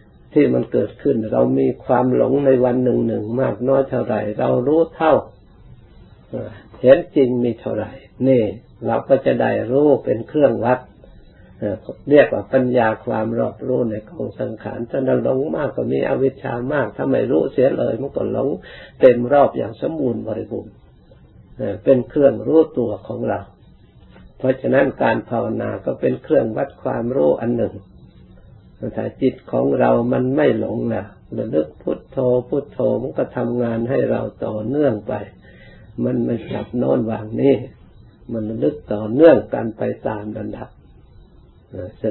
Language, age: Thai, 60-79